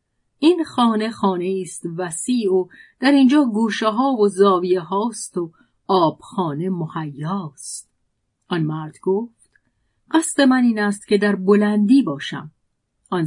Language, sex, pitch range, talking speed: Persian, female, 170-225 Hz, 135 wpm